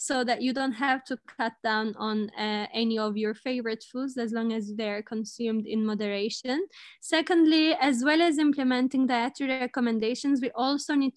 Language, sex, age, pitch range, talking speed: English, female, 20-39, 225-265 Hz, 170 wpm